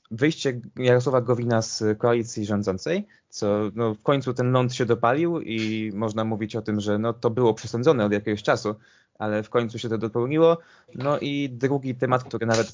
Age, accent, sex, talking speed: 20-39, native, male, 185 wpm